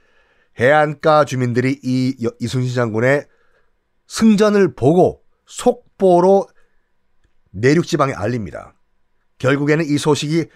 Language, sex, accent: Korean, male, native